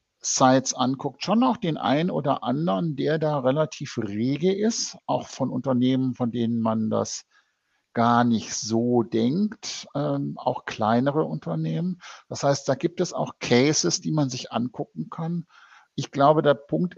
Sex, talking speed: male, 155 wpm